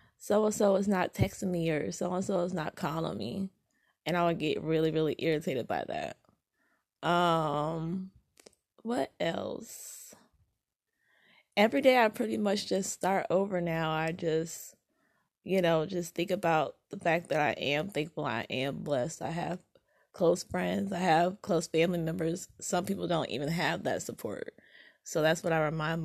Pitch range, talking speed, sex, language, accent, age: 160-190 Hz, 160 wpm, female, English, American, 20-39